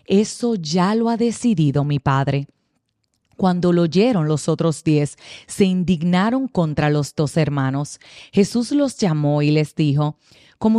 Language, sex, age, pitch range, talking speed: Spanish, female, 30-49, 150-215 Hz, 145 wpm